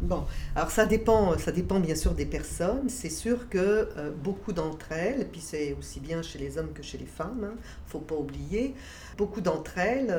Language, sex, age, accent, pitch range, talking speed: French, female, 50-69, French, 150-190 Hz, 220 wpm